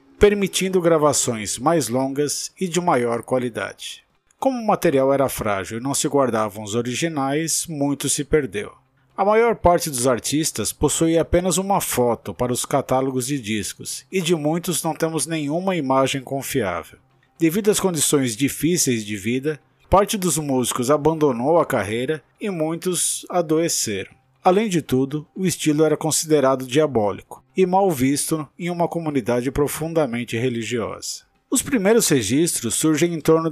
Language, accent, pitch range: Portuguese, Brazilian, 130-165 Hz